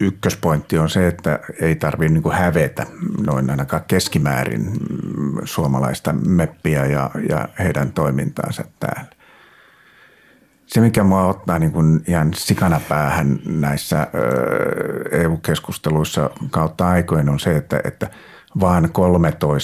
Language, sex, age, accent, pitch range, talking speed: Finnish, male, 50-69, native, 75-90 Hz, 105 wpm